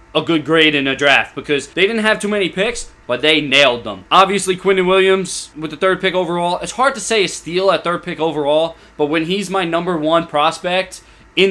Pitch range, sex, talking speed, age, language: 160-190 Hz, male, 225 wpm, 20-39, English